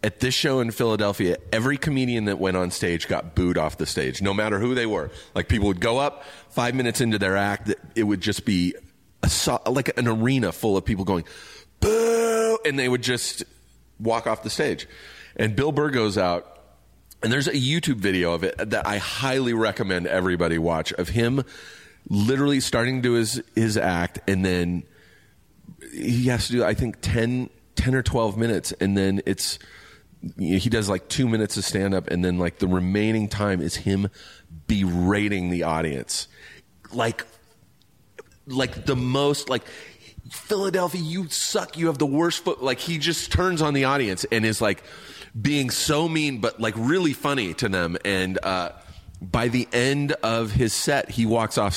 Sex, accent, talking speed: male, American, 180 wpm